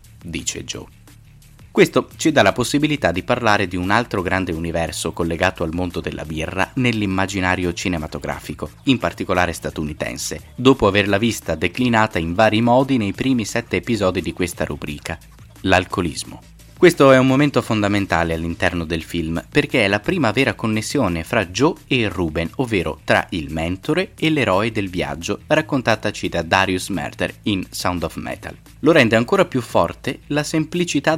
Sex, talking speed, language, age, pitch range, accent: male, 155 wpm, Italian, 20-39, 90-125 Hz, native